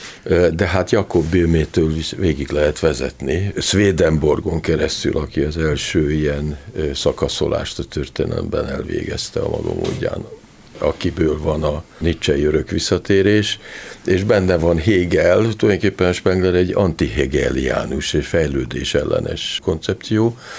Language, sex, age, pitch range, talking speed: Hungarian, male, 50-69, 80-100 Hz, 110 wpm